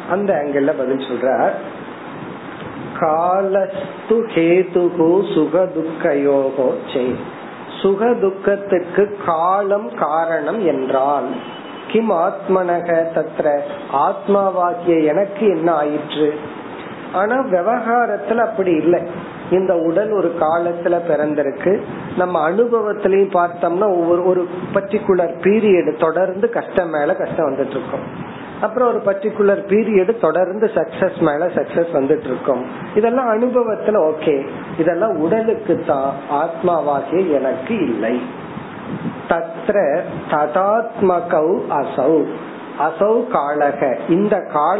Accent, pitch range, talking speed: native, 165-205 Hz, 45 wpm